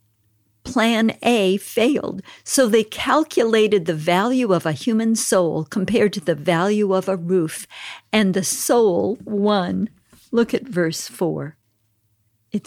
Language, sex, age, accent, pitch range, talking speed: English, female, 50-69, American, 170-245 Hz, 135 wpm